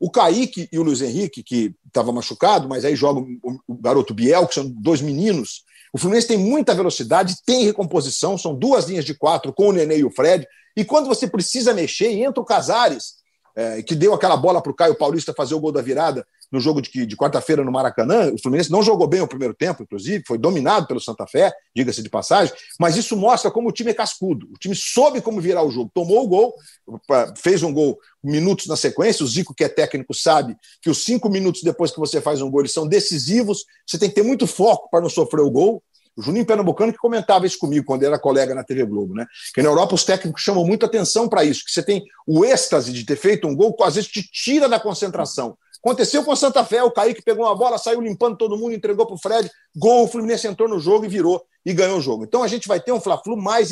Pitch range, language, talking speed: 165-230 Hz, Portuguese, 240 wpm